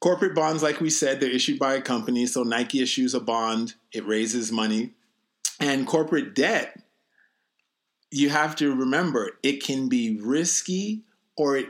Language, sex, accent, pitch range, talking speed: English, male, American, 125-165 Hz, 160 wpm